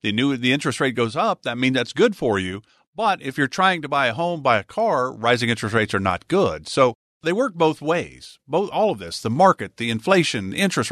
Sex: male